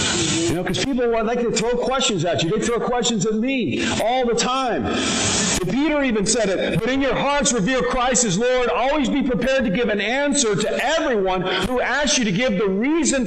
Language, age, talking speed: English, 50-69, 210 wpm